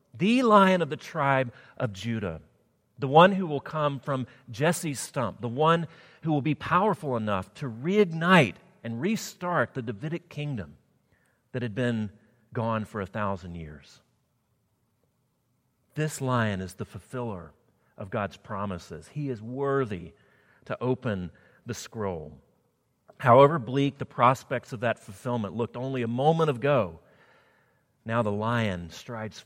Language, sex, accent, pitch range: English, male, American, 110-155 Hz